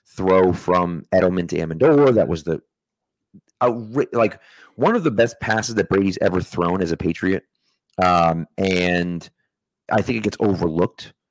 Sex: male